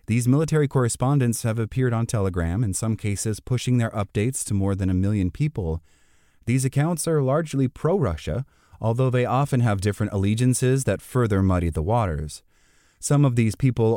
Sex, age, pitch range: male, 30-49, 90-125 Hz